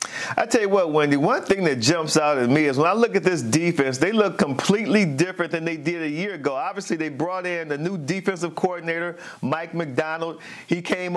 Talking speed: 220 wpm